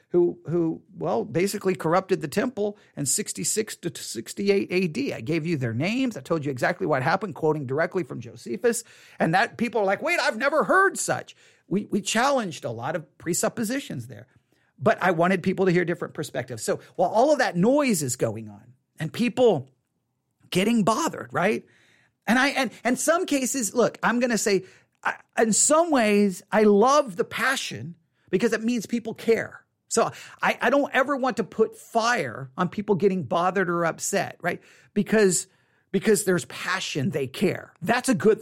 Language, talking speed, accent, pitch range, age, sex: English, 180 wpm, American, 155-220 Hz, 40-59, male